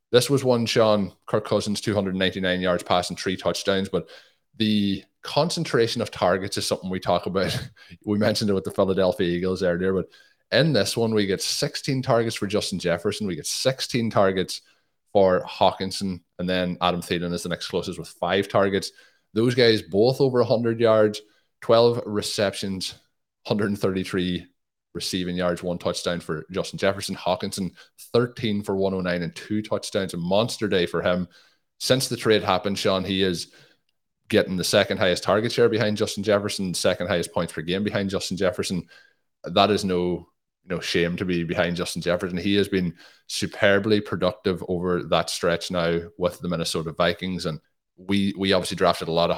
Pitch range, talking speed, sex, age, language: 90-105 Hz, 170 wpm, male, 20-39, English